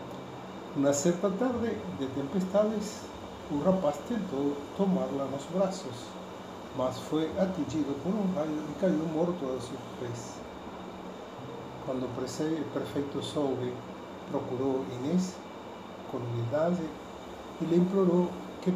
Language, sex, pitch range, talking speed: Portuguese, male, 130-175 Hz, 115 wpm